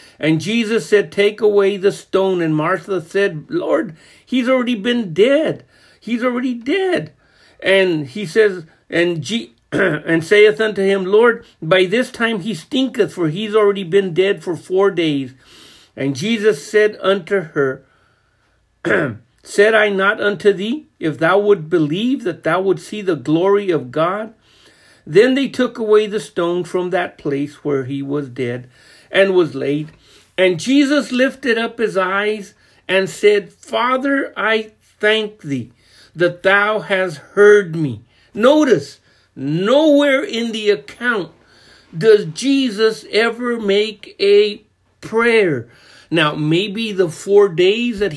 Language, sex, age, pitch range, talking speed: English, male, 50-69, 165-225 Hz, 140 wpm